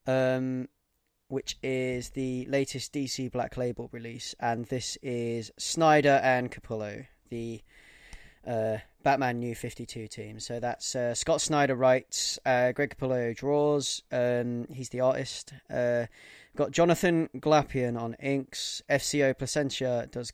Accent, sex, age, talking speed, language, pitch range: British, male, 20-39, 135 wpm, English, 115-135 Hz